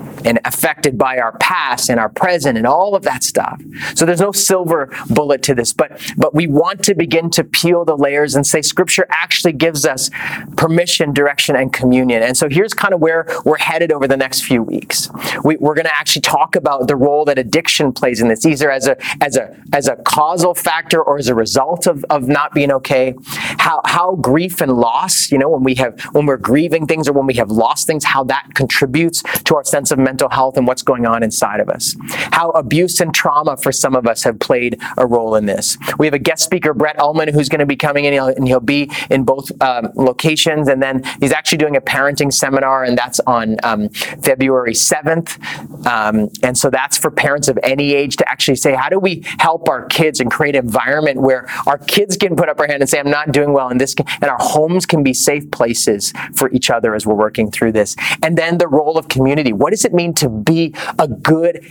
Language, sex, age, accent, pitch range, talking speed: English, male, 30-49, American, 130-160 Hz, 230 wpm